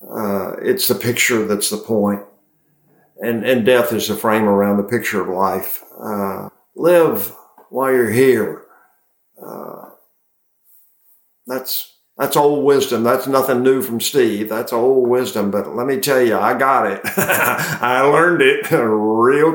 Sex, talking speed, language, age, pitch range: male, 145 wpm, English, 50-69, 115-140 Hz